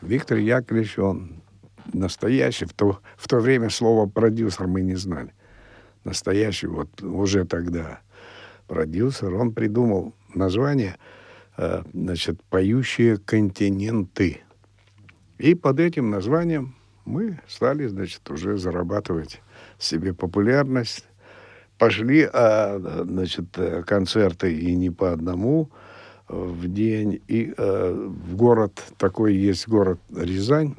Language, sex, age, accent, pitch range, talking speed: Russian, male, 70-89, native, 90-115 Hz, 95 wpm